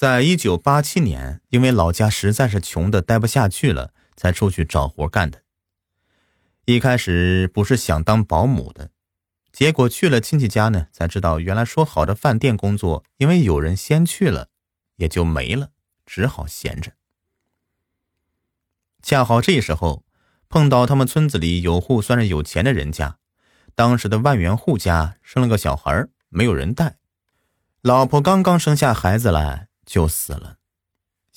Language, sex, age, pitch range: Chinese, male, 30-49, 85-125 Hz